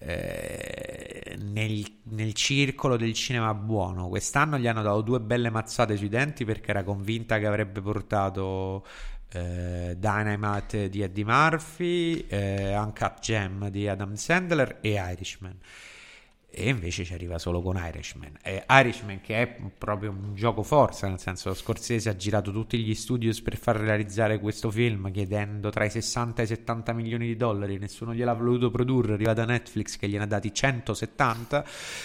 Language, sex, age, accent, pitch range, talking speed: Italian, male, 30-49, native, 100-120 Hz, 155 wpm